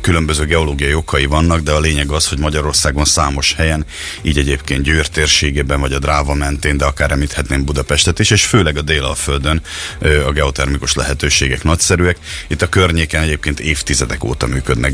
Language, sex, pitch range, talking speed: Hungarian, male, 70-80 Hz, 160 wpm